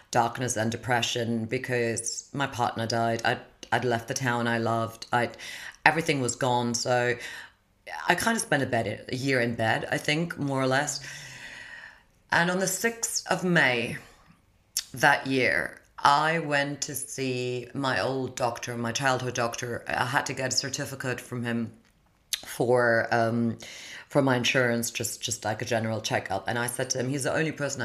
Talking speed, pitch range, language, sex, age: 170 wpm, 115-130 Hz, English, female, 30-49